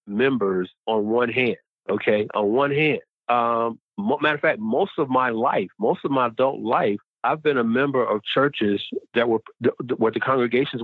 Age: 40-59